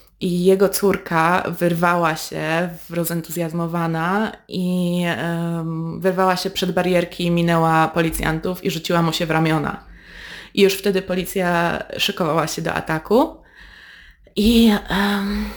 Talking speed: 110 wpm